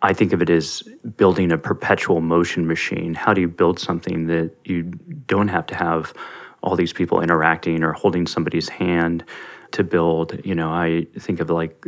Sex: male